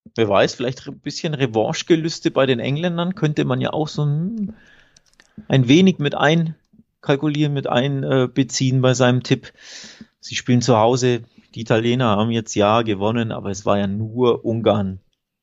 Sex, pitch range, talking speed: male, 100-125 Hz, 160 wpm